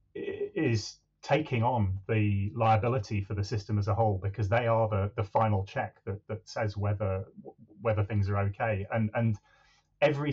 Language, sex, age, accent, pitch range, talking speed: English, male, 30-49, British, 105-115 Hz, 170 wpm